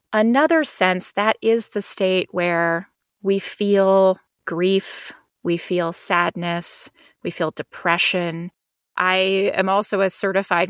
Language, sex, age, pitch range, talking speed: English, female, 30-49, 180-215 Hz, 120 wpm